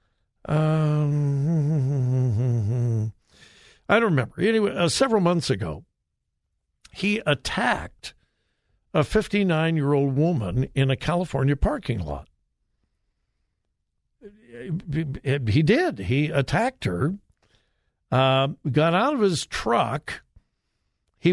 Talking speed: 85 wpm